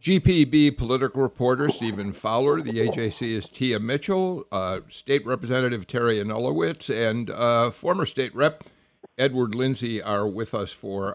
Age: 50-69